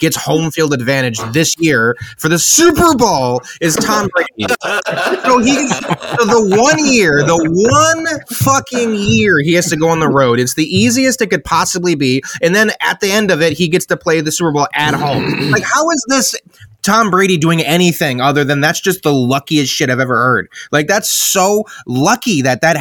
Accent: American